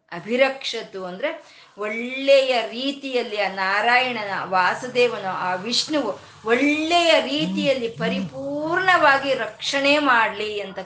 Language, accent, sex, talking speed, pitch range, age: Kannada, native, female, 85 wpm, 190-270 Hz, 20-39